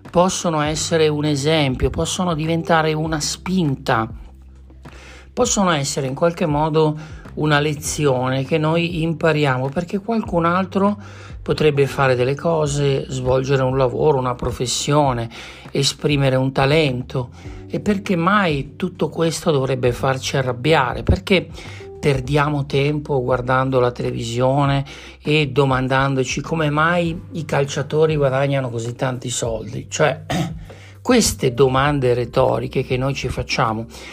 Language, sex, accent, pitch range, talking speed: Italian, male, native, 130-160 Hz, 115 wpm